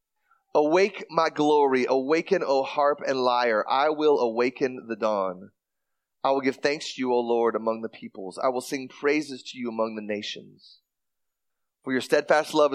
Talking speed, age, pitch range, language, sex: 175 wpm, 30-49, 130-205 Hz, English, male